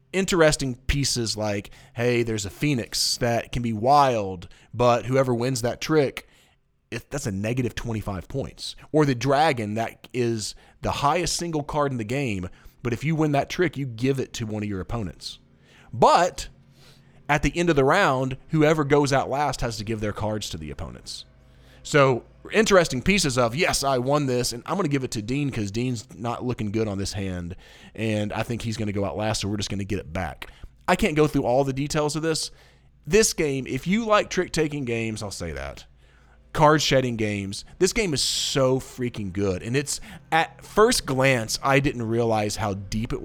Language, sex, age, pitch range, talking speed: English, male, 30-49, 110-145 Hz, 205 wpm